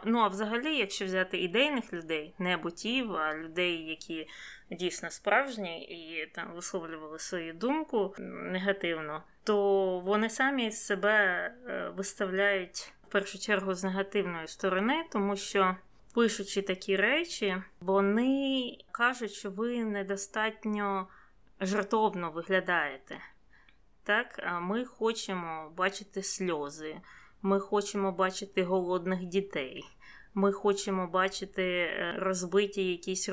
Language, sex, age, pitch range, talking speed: Ukrainian, female, 20-39, 175-210 Hz, 105 wpm